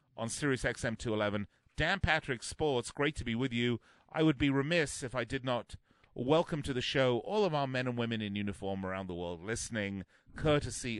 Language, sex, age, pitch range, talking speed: English, male, 40-59, 95-120 Hz, 195 wpm